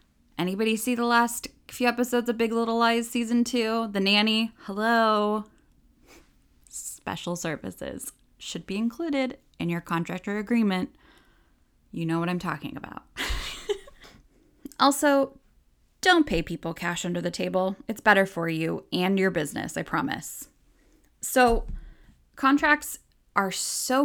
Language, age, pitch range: English, 10-29, 180-240 Hz